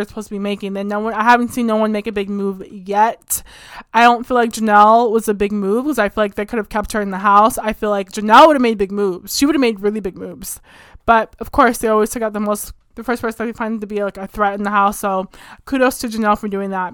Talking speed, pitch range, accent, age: 295 wpm, 210-250 Hz, American, 20-39